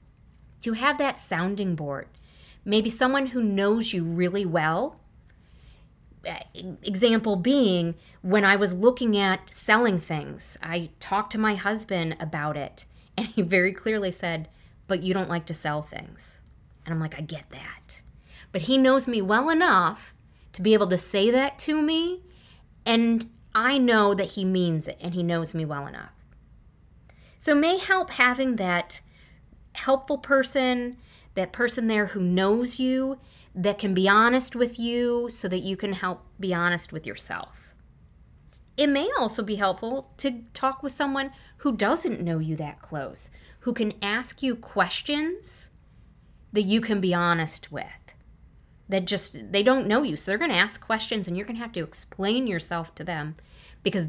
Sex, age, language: female, 30-49, English